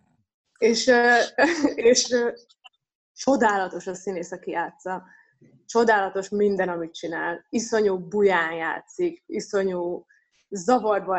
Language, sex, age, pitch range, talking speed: Hungarian, female, 20-39, 190-245 Hz, 85 wpm